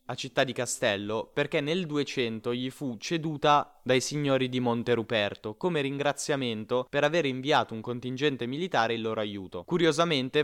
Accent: native